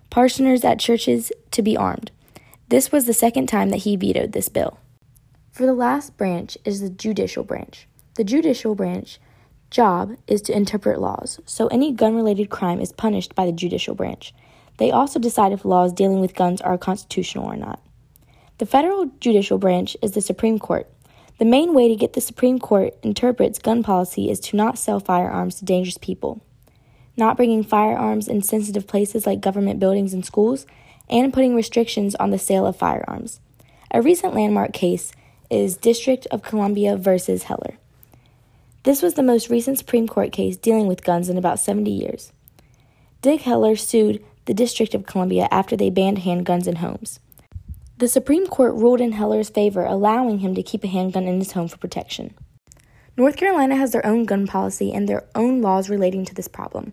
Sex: female